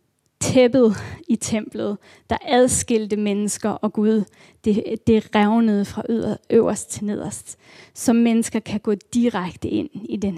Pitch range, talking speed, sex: 210-240 Hz, 135 wpm, female